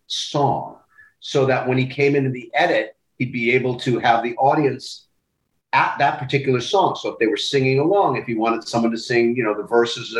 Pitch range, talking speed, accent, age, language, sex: 115-155 Hz, 210 wpm, American, 40-59, English, male